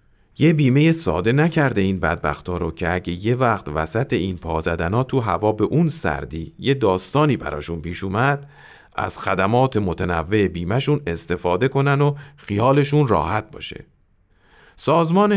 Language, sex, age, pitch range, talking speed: Persian, male, 40-59, 90-135 Hz, 135 wpm